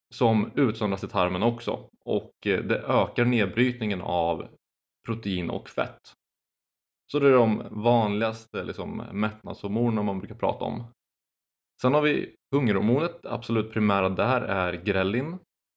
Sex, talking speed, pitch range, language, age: male, 125 wpm, 95-120 Hz, Swedish, 20-39